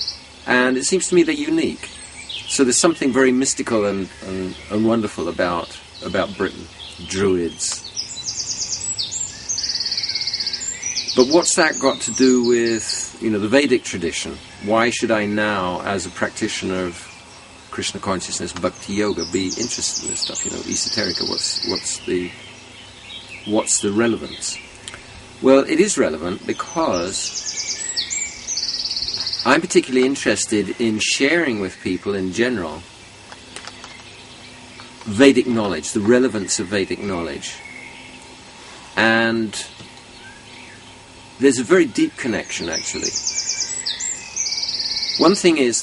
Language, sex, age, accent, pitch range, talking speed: English, male, 50-69, British, 95-130 Hz, 115 wpm